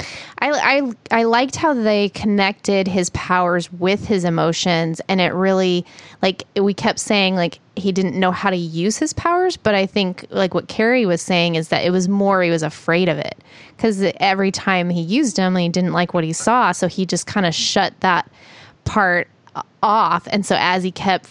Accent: American